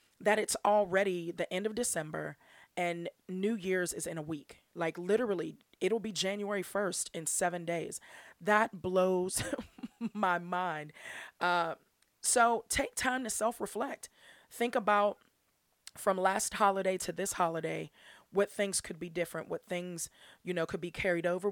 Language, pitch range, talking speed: English, 170-210 Hz, 150 wpm